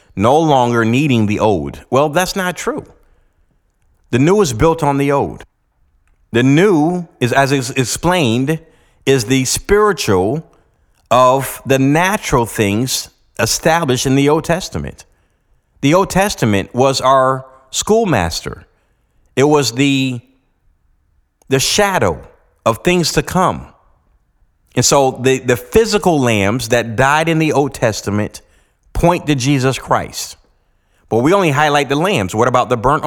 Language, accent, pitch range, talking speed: English, American, 115-165 Hz, 135 wpm